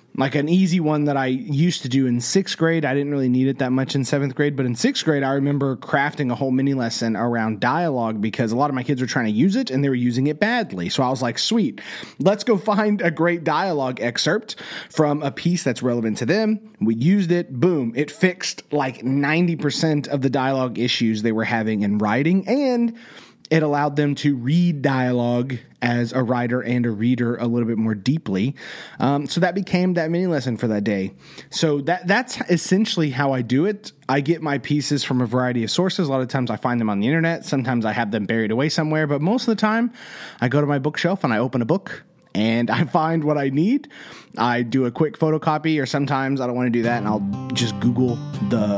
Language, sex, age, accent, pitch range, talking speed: English, male, 30-49, American, 120-165 Hz, 235 wpm